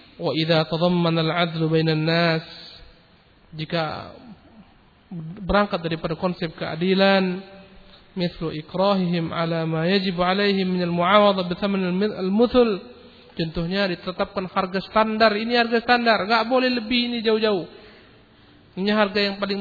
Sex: male